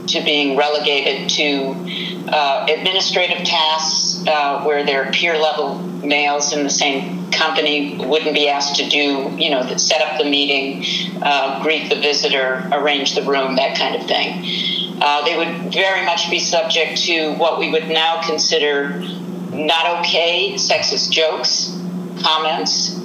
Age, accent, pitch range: 50-69, American, 150-180 Hz